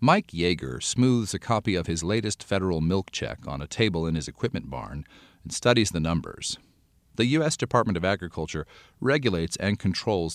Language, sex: English, male